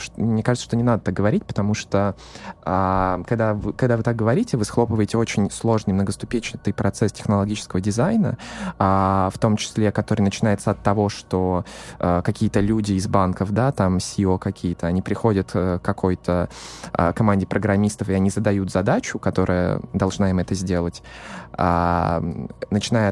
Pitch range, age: 95-115 Hz, 20-39